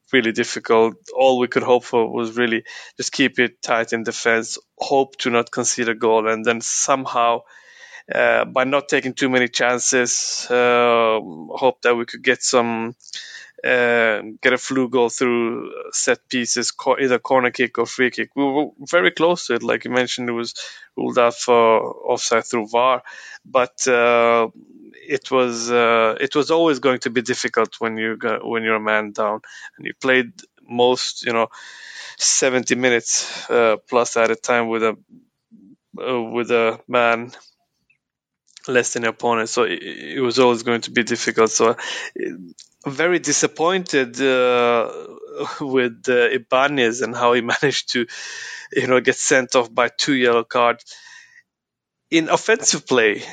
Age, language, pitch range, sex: 20-39, English, 115-130 Hz, male